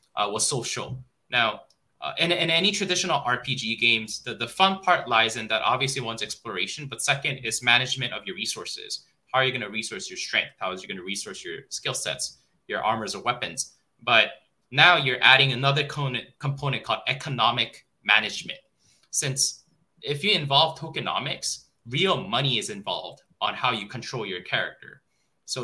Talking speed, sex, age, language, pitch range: 175 wpm, male, 20-39, English, 115-140 Hz